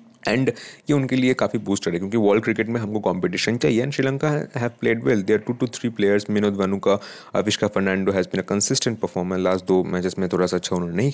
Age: 20-39